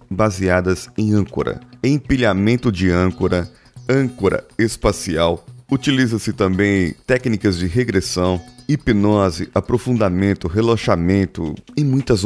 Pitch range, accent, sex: 90-120 Hz, Brazilian, male